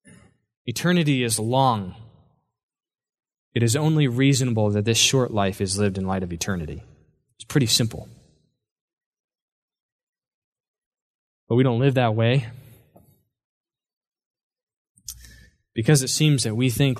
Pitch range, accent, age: 115-145 Hz, American, 20-39